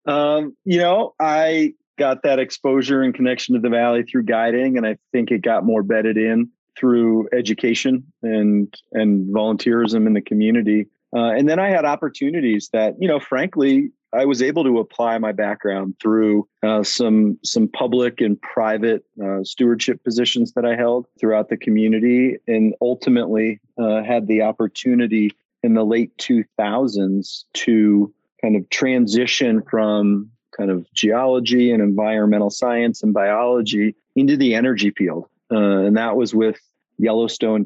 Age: 40-59